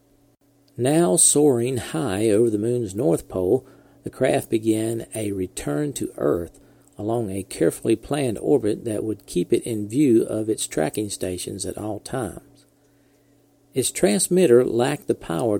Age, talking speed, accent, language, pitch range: 50-69, 145 wpm, American, English, 105-140 Hz